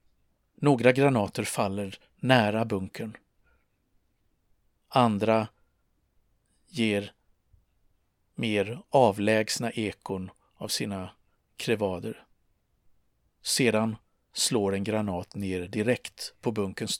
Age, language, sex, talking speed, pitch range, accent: 50-69, Swedish, male, 75 wpm, 95-115 Hz, native